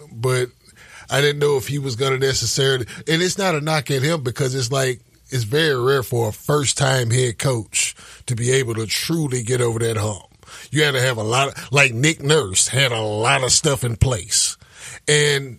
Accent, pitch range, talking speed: American, 115-140 Hz, 225 wpm